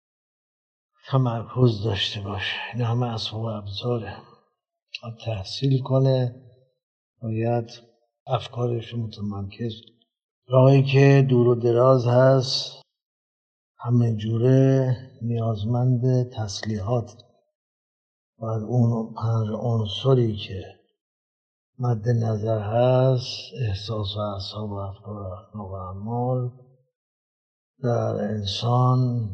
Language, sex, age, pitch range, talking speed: Persian, male, 60-79, 110-125 Hz, 80 wpm